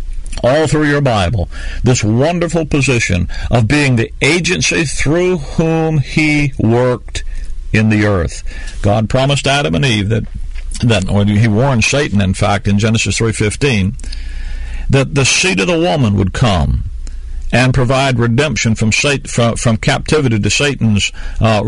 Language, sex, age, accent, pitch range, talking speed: English, male, 50-69, American, 90-140 Hz, 145 wpm